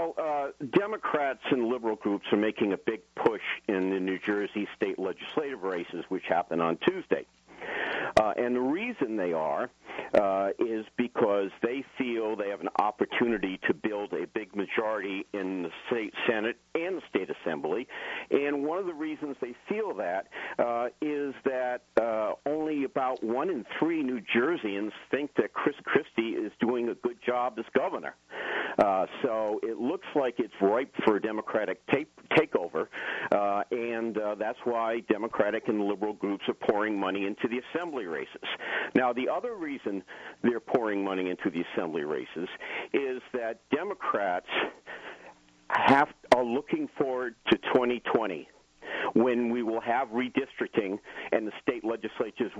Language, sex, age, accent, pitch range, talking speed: English, male, 50-69, American, 105-145 Hz, 155 wpm